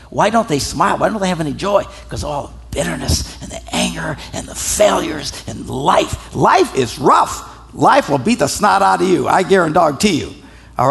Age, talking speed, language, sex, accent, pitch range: 60-79, 210 wpm, English, male, American, 140-220 Hz